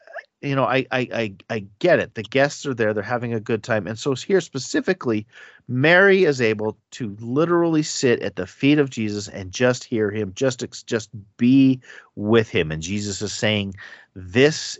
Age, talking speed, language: 40-59, 185 wpm, English